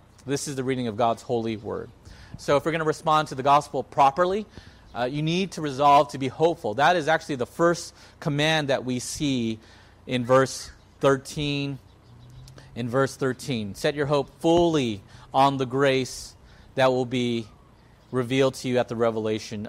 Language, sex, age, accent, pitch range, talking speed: English, male, 40-59, American, 120-155 Hz, 175 wpm